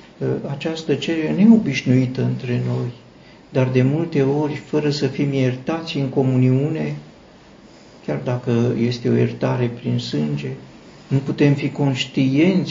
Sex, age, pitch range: male, 50-69, 120-145 Hz